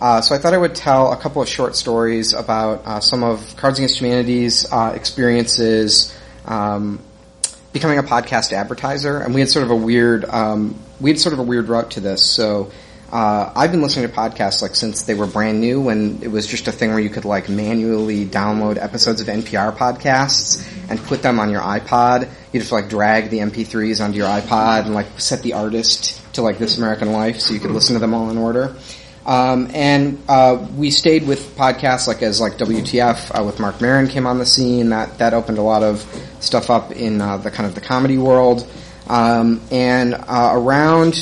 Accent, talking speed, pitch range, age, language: American, 210 wpm, 105-125 Hz, 30-49, English